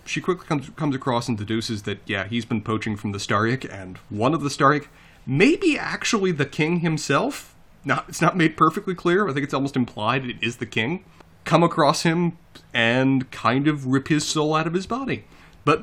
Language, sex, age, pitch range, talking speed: English, male, 30-49, 110-160 Hz, 205 wpm